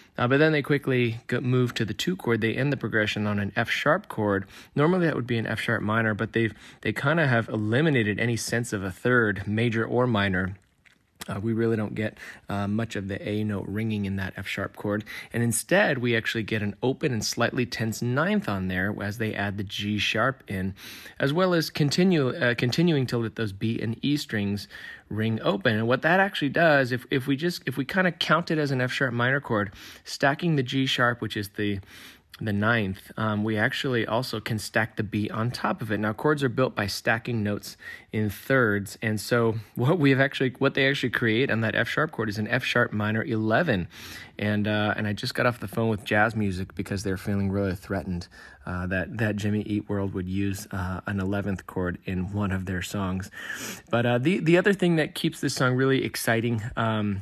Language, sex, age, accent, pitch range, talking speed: English, male, 20-39, American, 105-125 Hz, 225 wpm